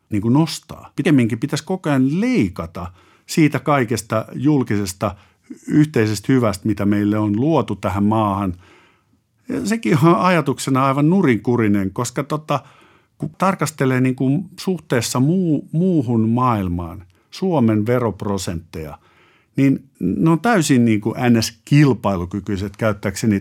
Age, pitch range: 50-69, 100-145 Hz